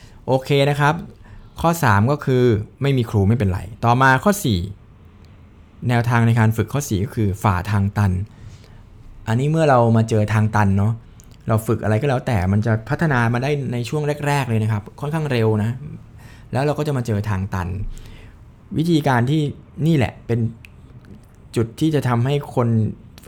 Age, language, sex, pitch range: 20-39, Thai, male, 105-125 Hz